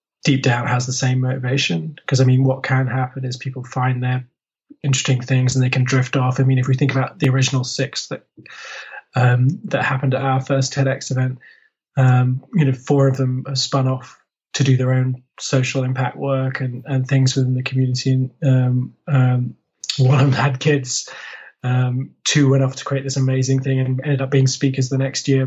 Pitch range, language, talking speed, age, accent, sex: 125-135 Hz, English, 205 wpm, 20-39, British, male